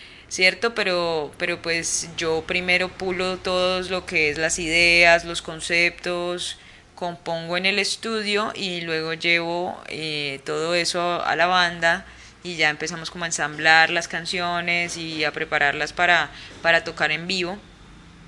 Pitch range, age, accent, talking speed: 160-180 Hz, 10-29, Colombian, 145 wpm